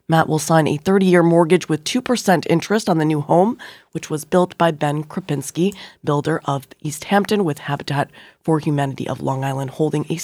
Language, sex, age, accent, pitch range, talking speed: English, female, 20-39, American, 150-185 Hz, 190 wpm